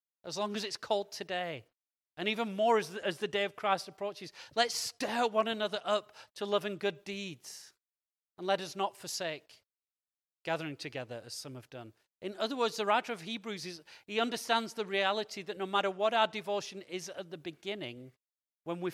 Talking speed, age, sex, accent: 195 wpm, 40-59, male, British